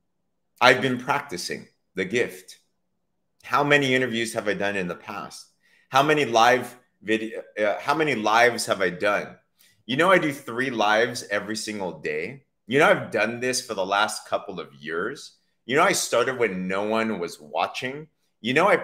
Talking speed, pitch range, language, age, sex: 180 wpm, 105-135 Hz, English, 30-49, male